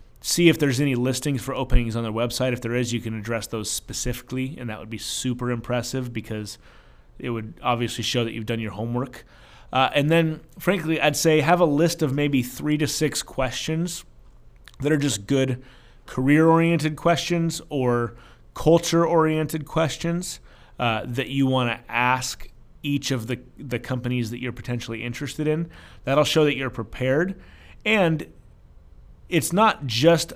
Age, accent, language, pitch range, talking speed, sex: 30-49, American, English, 120-150 Hz, 165 wpm, male